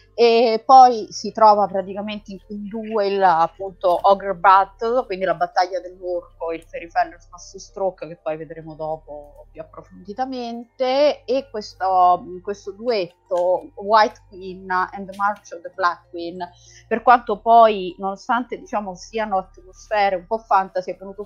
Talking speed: 140 wpm